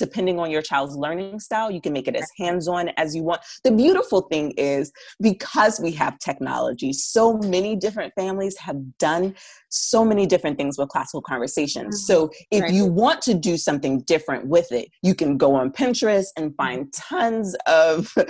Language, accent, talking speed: English, American, 180 wpm